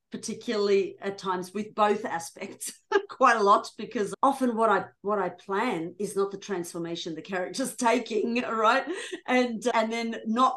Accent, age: Australian, 40-59